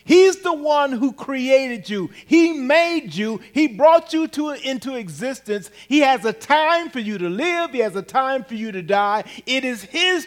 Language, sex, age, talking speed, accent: English, male, 40-59, 195 wpm, American